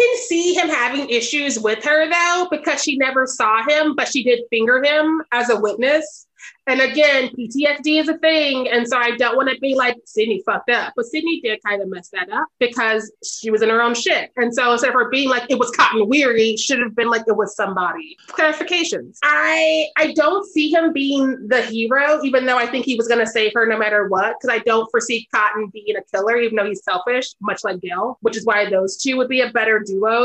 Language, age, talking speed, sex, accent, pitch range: English, 20-39, 235 wpm, female, American, 220-295 Hz